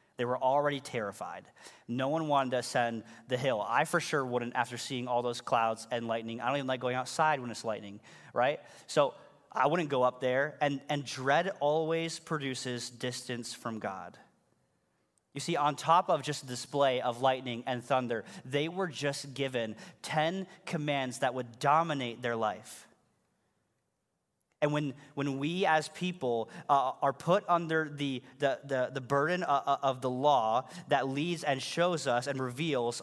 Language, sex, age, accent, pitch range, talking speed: English, male, 30-49, American, 125-160 Hz, 170 wpm